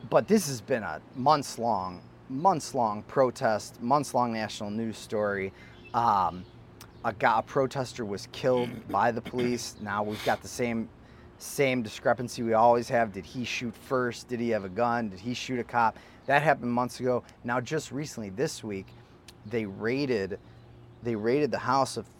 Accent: American